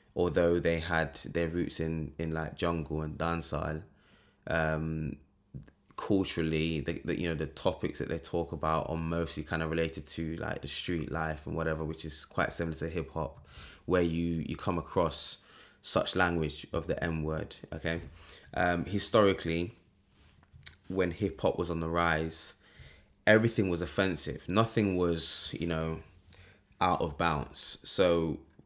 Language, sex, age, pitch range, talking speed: English, male, 20-39, 80-90 Hz, 150 wpm